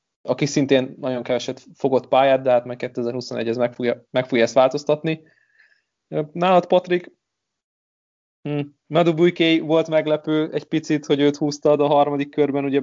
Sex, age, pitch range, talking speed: male, 20-39, 120-145 Hz, 140 wpm